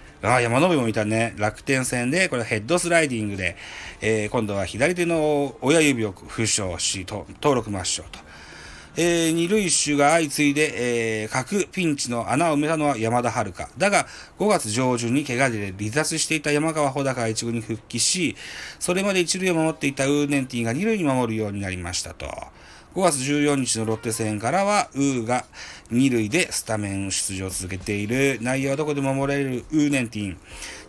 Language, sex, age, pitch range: Japanese, male, 40-59, 105-145 Hz